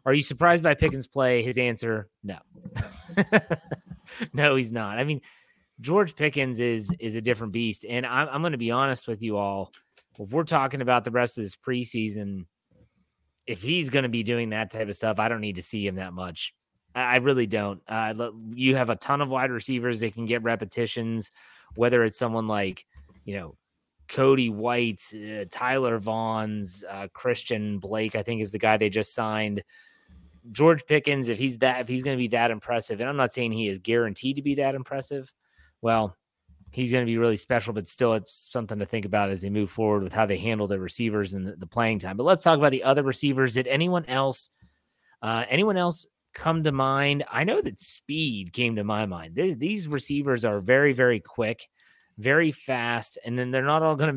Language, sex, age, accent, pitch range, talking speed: English, male, 30-49, American, 110-135 Hz, 200 wpm